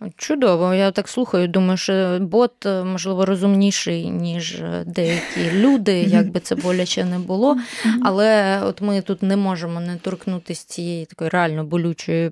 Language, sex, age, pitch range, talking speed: Ukrainian, female, 20-39, 165-200 Hz, 145 wpm